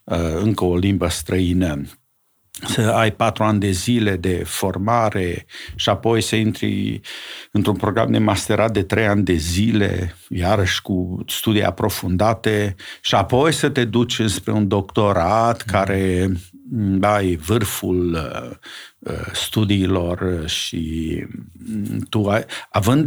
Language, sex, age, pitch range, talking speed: Romanian, male, 50-69, 90-115 Hz, 115 wpm